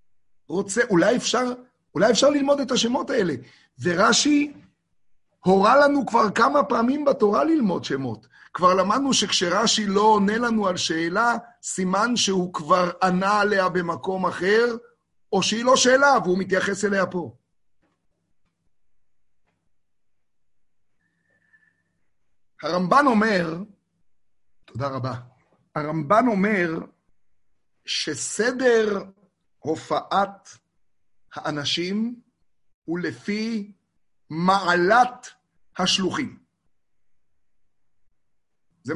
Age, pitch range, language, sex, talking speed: 50-69, 175-235 Hz, Hebrew, male, 85 wpm